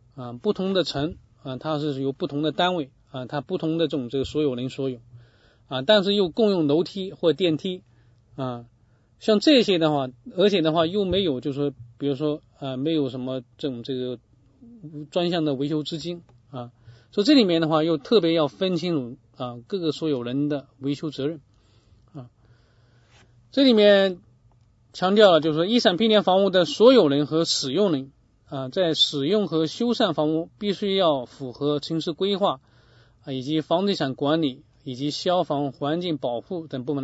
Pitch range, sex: 120-165 Hz, male